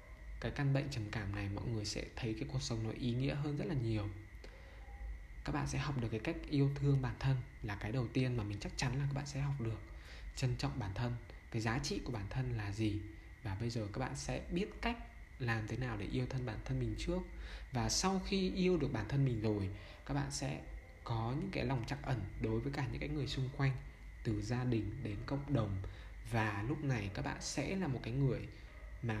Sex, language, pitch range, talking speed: male, Vietnamese, 110-140 Hz, 240 wpm